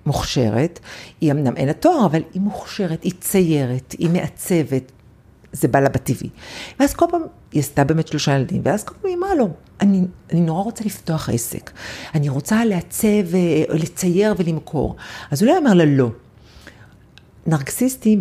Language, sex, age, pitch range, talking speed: Hebrew, female, 50-69, 140-215 Hz, 150 wpm